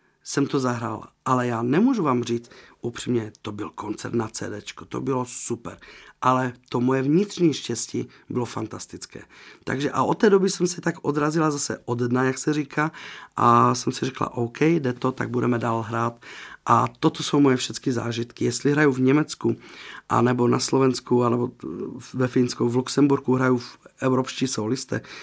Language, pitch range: Czech, 115-135 Hz